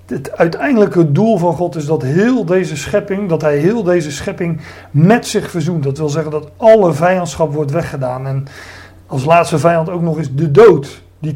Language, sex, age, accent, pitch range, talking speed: Dutch, male, 40-59, Dutch, 135-170 Hz, 190 wpm